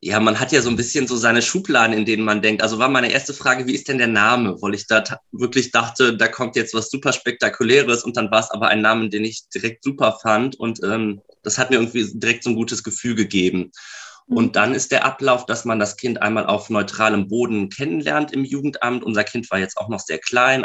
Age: 20-39